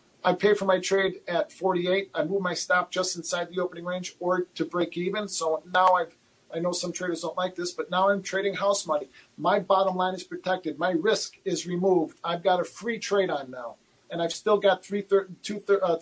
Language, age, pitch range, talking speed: English, 40-59, 175-200 Hz, 230 wpm